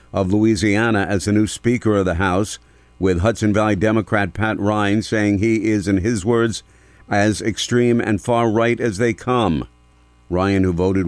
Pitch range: 80-110 Hz